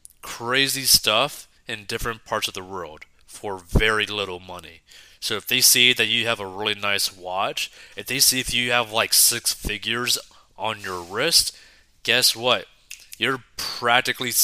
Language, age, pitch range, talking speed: English, 20-39, 95-125 Hz, 160 wpm